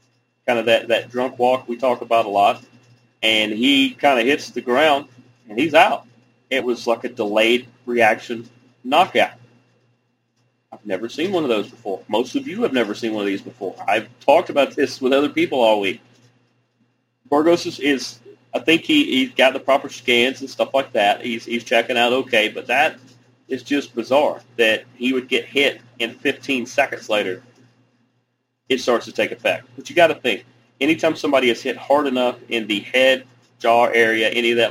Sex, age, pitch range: male, 30-49, 120-130 Hz